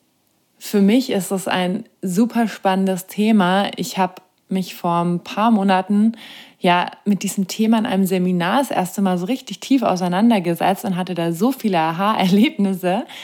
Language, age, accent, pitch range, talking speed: German, 20-39, German, 175-220 Hz, 160 wpm